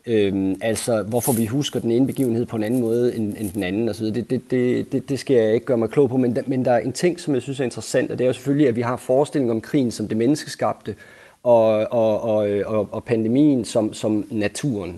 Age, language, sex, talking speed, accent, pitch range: 30-49, Danish, male, 250 wpm, native, 110-130 Hz